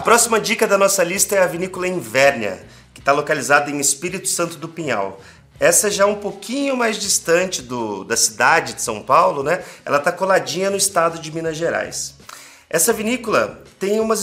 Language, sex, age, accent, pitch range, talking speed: Portuguese, male, 30-49, Brazilian, 145-200 Hz, 180 wpm